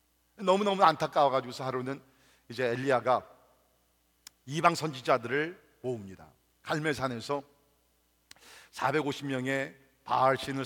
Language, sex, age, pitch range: Korean, male, 50-69, 130-210 Hz